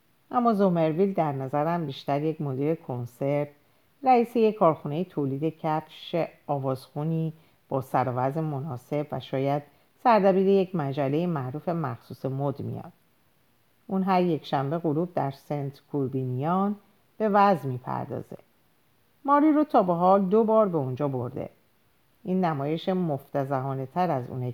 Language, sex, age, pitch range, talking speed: Persian, female, 50-69, 130-175 Hz, 130 wpm